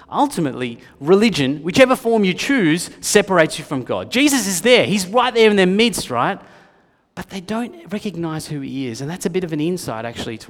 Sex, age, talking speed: male, 30-49, 205 wpm